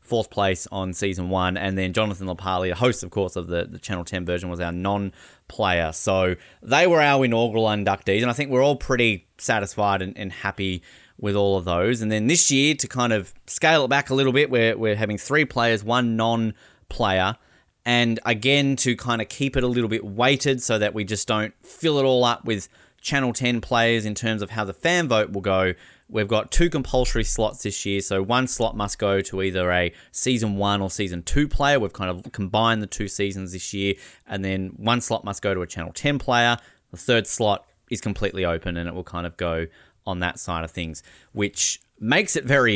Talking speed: 220 wpm